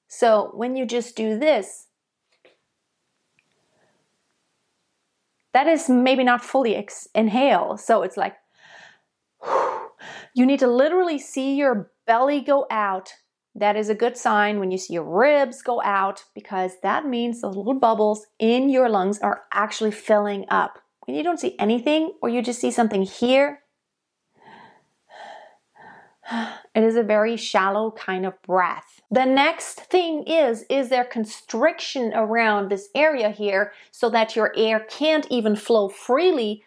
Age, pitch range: 30-49, 210-285 Hz